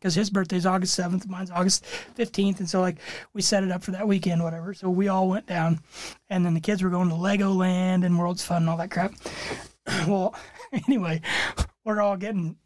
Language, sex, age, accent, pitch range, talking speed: English, male, 30-49, American, 170-200 Hz, 210 wpm